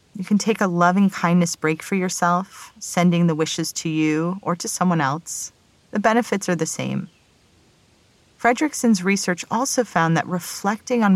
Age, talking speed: 40-59, 155 wpm